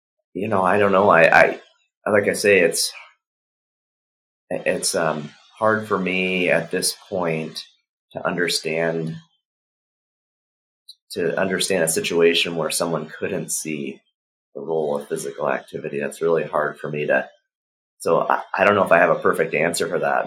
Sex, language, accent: male, English, American